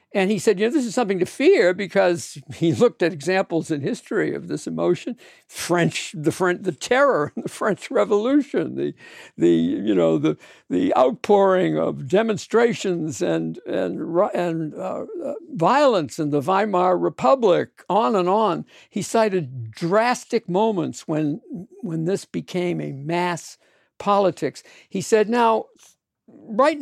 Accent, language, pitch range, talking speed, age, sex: American, English, 155-230 Hz, 145 wpm, 60-79, male